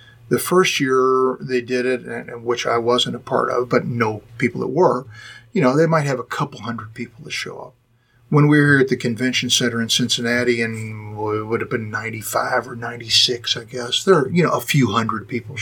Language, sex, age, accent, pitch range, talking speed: English, male, 50-69, American, 115-130 Hz, 225 wpm